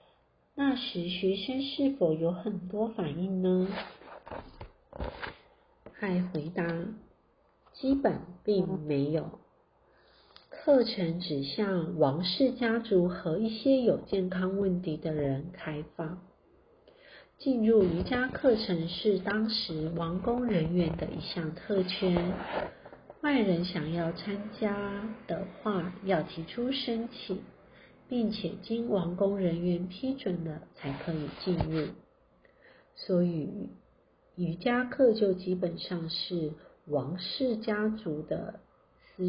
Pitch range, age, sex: 175-230 Hz, 50-69, female